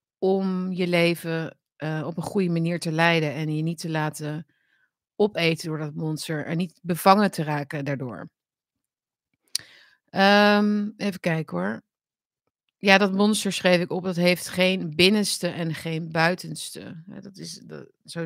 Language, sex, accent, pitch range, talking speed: Dutch, female, Dutch, 160-185 Hz, 140 wpm